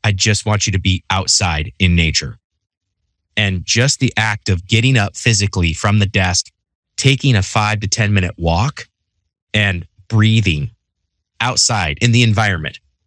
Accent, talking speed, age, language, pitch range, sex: American, 150 wpm, 30-49, English, 90-110 Hz, male